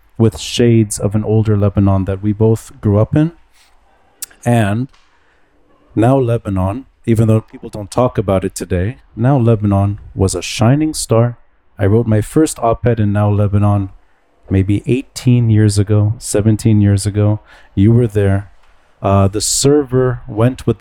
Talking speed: 150 wpm